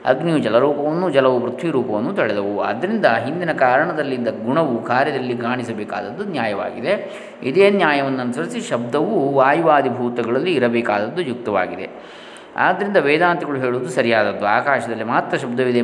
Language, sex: Kannada, male